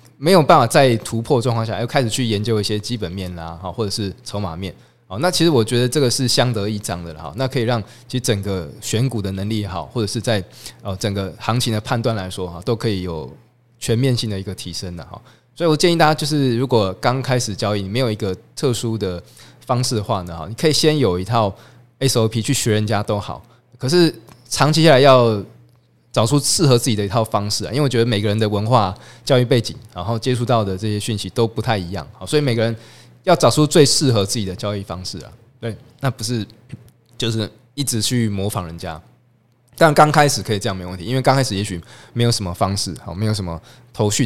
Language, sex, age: Chinese, male, 20-39